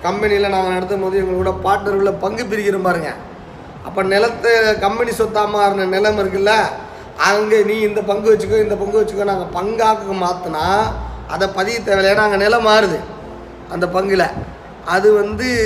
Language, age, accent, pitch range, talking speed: Tamil, 30-49, native, 190-220 Hz, 150 wpm